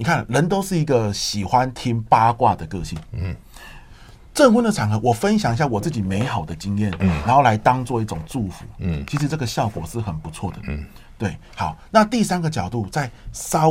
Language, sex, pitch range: Chinese, male, 95-140 Hz